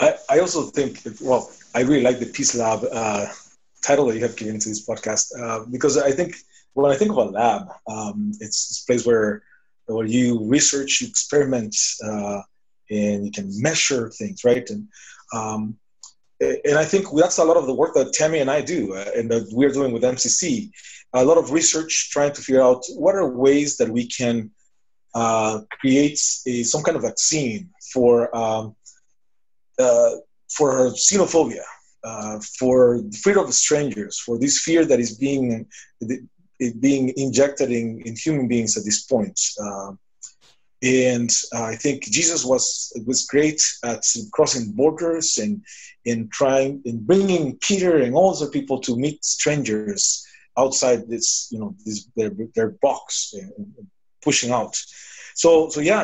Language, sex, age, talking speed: English, male, 30-49, 170 wpm